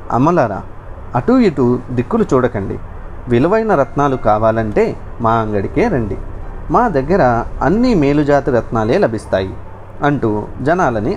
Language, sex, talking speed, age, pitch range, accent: Telugu, male, 100 wpm, 40-59, 105-140 Hz, native